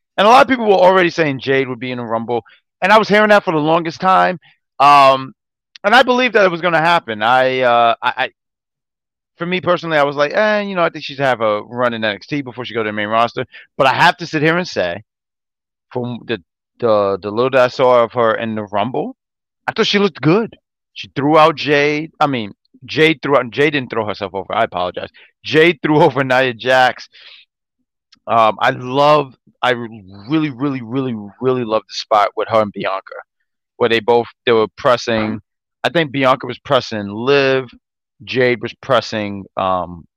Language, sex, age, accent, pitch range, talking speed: English, male, 30-49, American, 115-155 Hz, 210 wpm